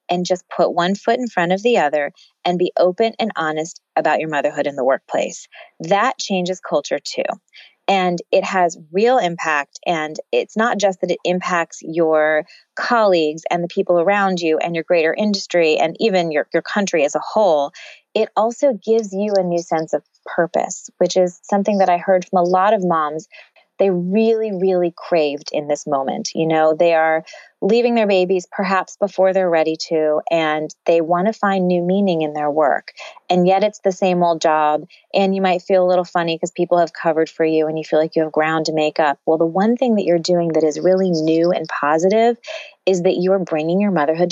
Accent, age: American, 30-49